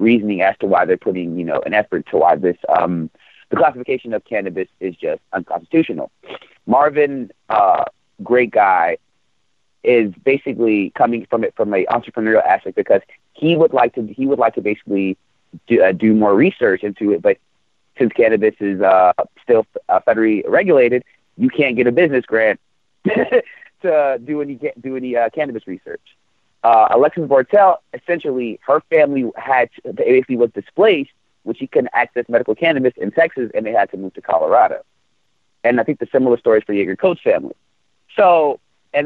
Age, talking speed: 30-49, 175 wpm